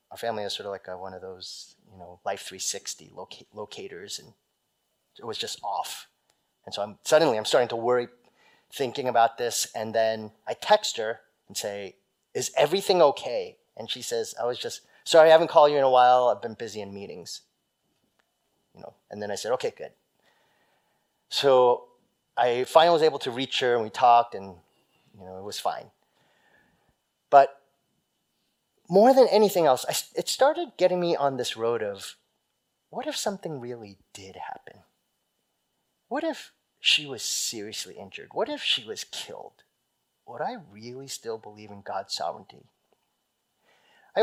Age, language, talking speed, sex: 30-49, English, 170 wpm, male